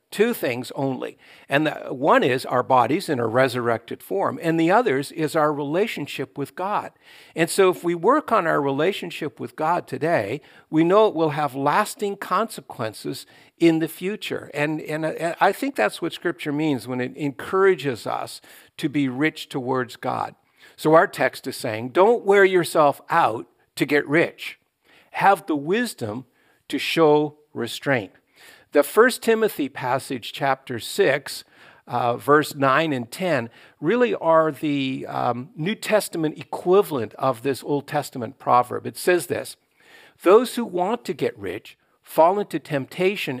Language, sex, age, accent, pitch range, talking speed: English, male, 50-69, American, 135-185 Hz, 150 wpm